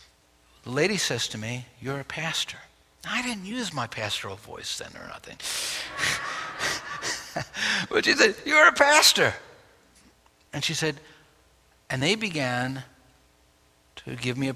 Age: 60-79